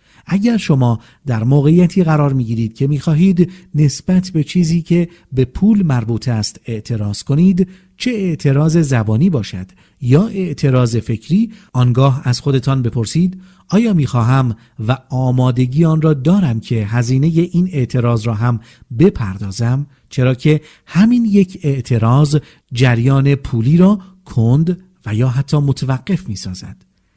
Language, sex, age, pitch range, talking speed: English, male, 50-69, 120-175 Hz, 135 wpm